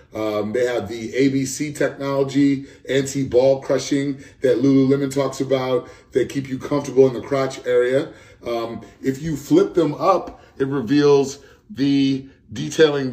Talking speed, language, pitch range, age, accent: 135 wpm, English, 115-140 Hz, 30-49, American